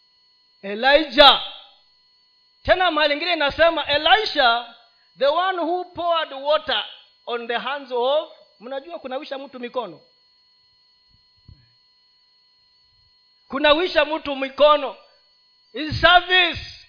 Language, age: Swahili, 40-59